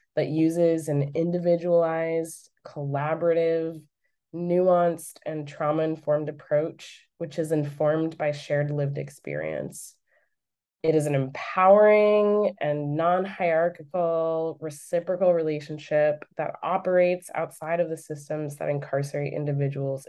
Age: 20-39